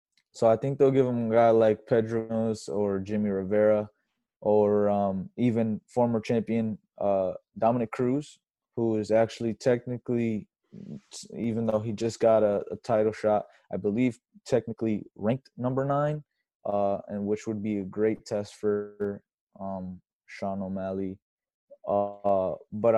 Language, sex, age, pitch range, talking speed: English, male, 20-39, 100-115 Hz, 140 wpm